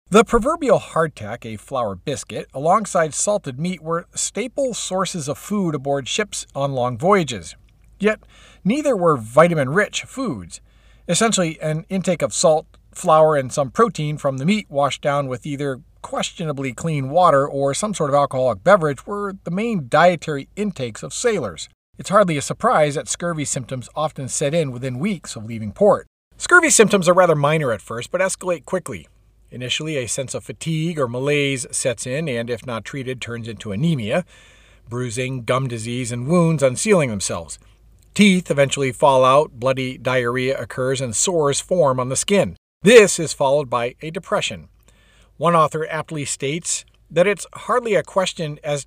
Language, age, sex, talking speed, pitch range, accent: English, 50-69, male, 165 wpm, 130-180 Hz, American